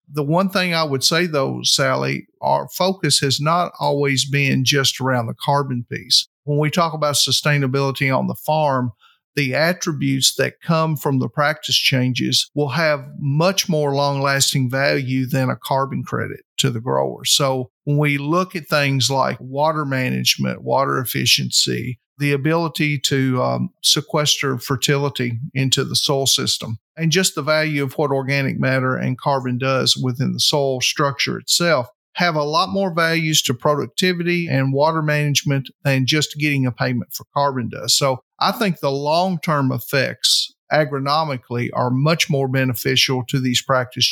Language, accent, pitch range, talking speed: English, American, 130-150 Hz, 160 wpm